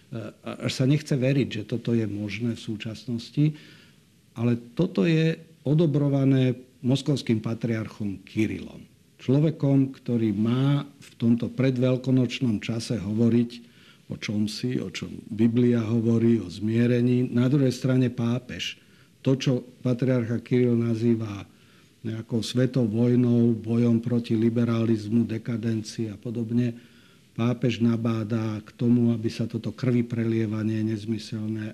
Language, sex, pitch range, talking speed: Slovak, male, 115-130 Hz, 115 wpm